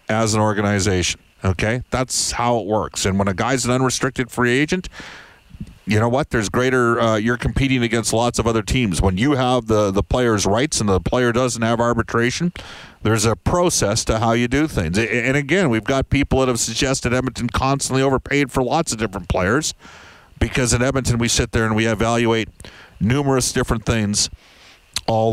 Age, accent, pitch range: 50-69, American, 100-125 Hz